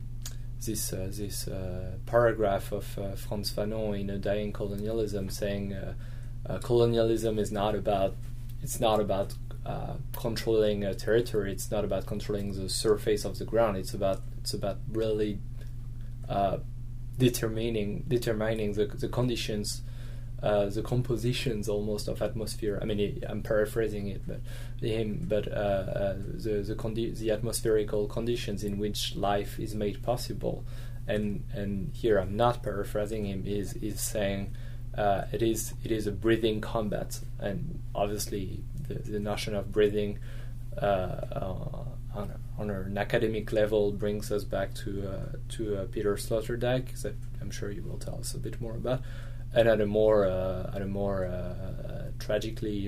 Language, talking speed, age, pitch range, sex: English, 155 wpm, 20-39, 105-120 Hz, male